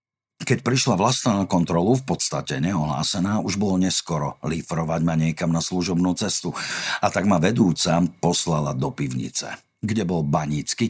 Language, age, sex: Slovak, 50-69, male